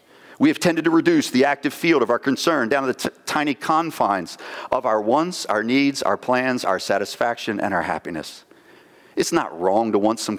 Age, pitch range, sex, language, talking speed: 50-69, 105-150 Hz, male, English, 195 wpm